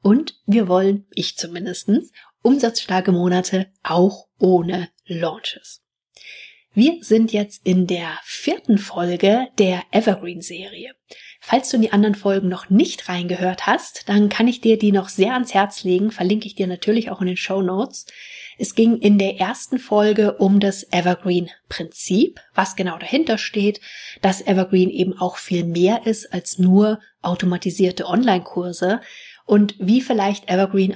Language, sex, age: German, female, 30-49